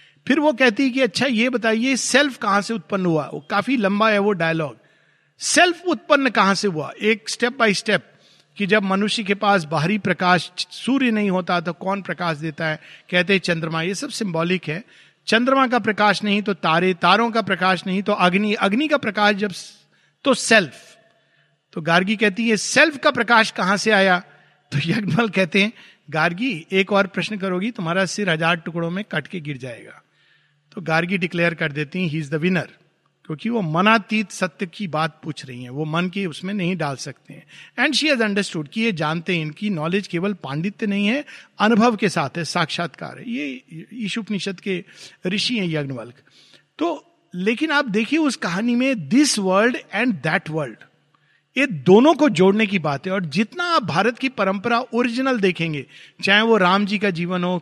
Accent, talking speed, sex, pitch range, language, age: native, 185 wpm, male, 170-225 Hz, Hindi, 50-69